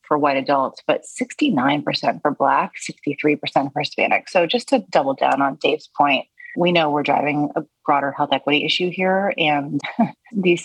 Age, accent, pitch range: 30-49, American, 155-220 Hz